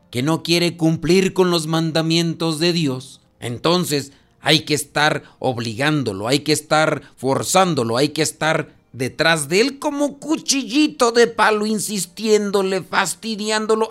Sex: male